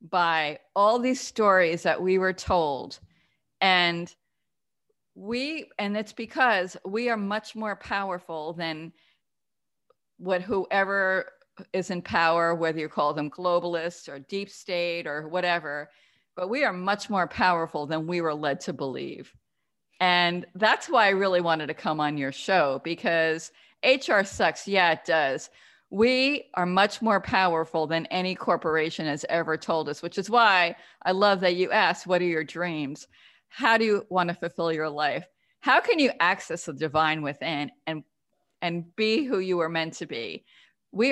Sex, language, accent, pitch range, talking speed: female, English, American, 160-195 Hz, 160 wpm